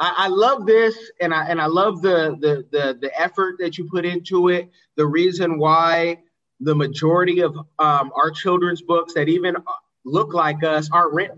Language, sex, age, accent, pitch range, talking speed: English, male, 30-49, American, 160-200 Hz, 185 wpm